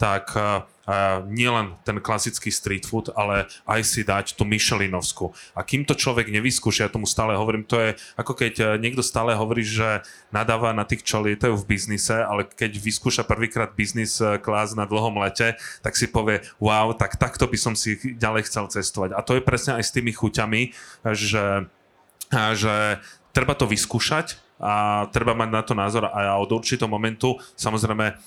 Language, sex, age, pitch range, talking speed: Slovak, male, 30-49, 105-115 Hz, 175 wpm